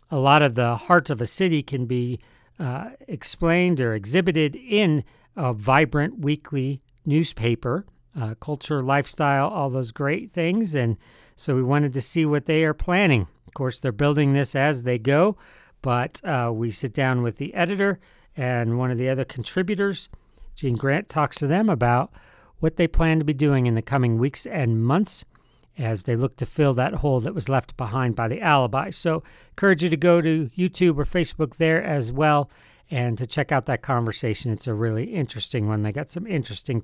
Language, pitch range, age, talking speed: English, 125-160 Hz, 50-69, 190 wpm